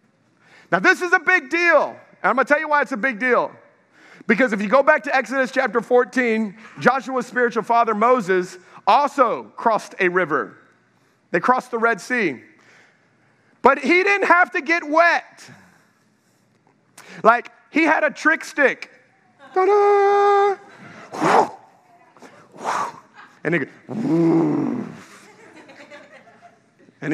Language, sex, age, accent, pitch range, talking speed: English, male, 40-59, American, 190-285 Hz, 120 wpm